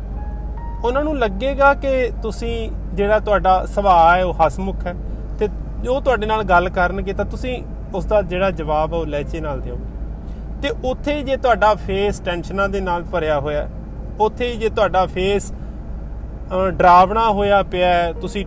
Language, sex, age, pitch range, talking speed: Punjabi, male, 30-49, 160-210 Hz, 155 wpm